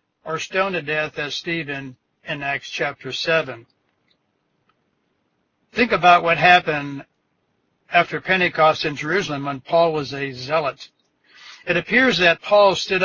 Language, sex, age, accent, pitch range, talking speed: English, male, 60-79, American, 150-180 Hz, 130 wpm